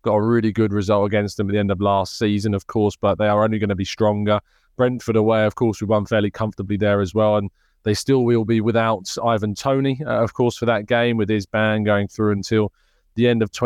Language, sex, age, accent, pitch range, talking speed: English, male, 20-39, British, 105-120 Hz, 250 wpm